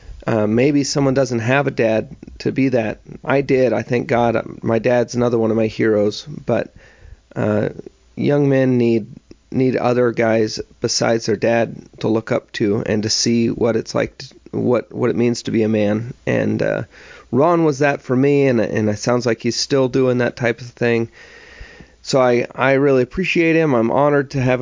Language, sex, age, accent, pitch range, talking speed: English, male, 30-49, American, 110-130 Hz, 195 wpm